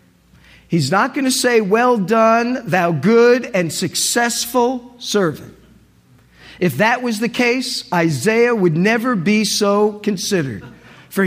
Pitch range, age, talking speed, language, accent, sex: 165-245 Hz, 50-69, 130 wpm, English, American, male